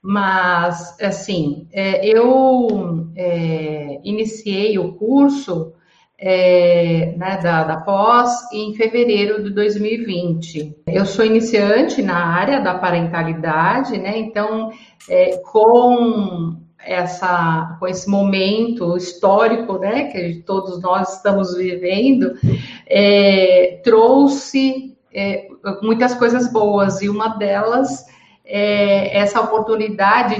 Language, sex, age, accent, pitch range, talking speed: Portuguese, female, 50-69, Brazilian, 180-235 Hz, 95 wpm